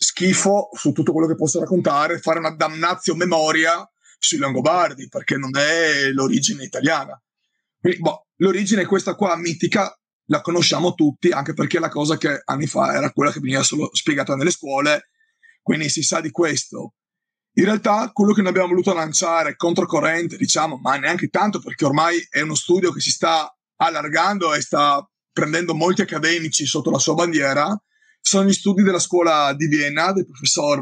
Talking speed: 165 wpm